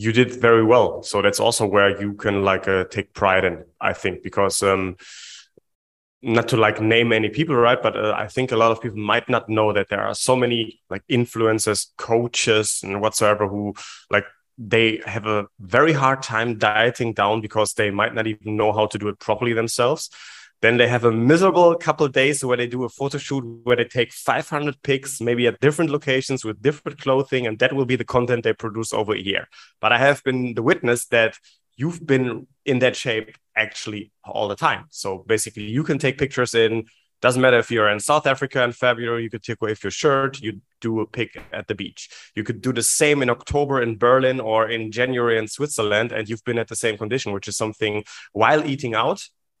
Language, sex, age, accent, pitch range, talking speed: English, male, 30-49, German, 110-130 Hz, 215 wpm